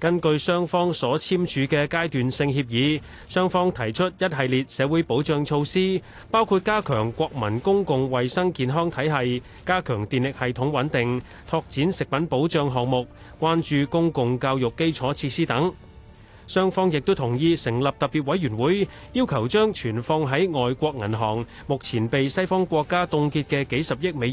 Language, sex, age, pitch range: Chinese, male, 30-49, 120-170 Hz